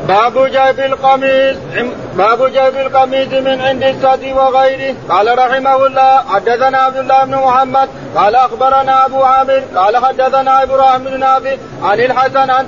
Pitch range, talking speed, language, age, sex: 260-265 Hz, 135 wpm, Arabic, 40-59, male